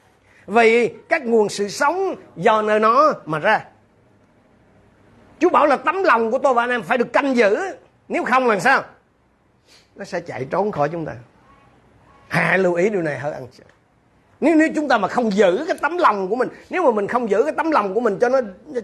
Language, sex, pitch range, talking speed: Vietnamese, male, 180-285 Hz, 215 wpm